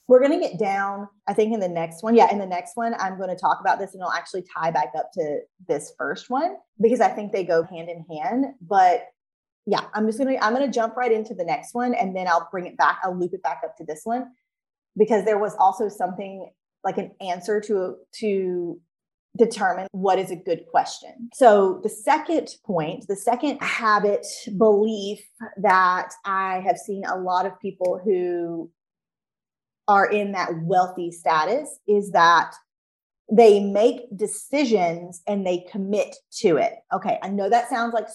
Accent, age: American, 30-49